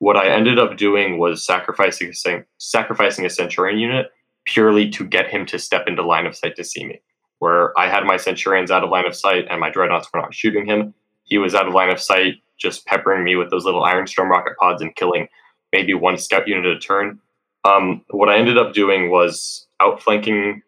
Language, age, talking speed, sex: English, 20-39, 220 wpm, male